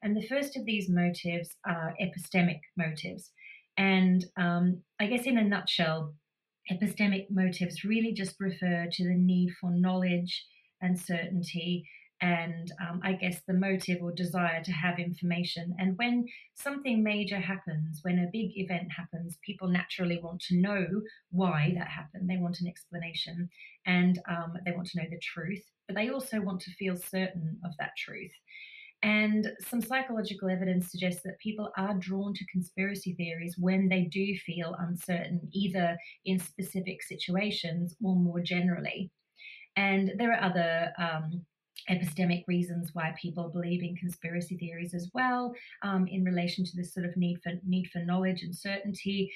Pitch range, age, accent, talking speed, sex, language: 175-195 Hz, 30-49, Australian, 160 wpm, female, Tamil